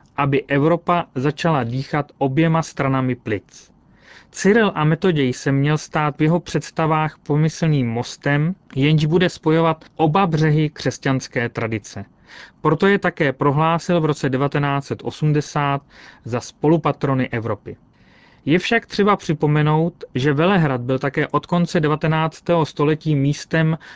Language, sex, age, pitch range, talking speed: Czech, male, 30-49, 140-165 Hz, 120 wpm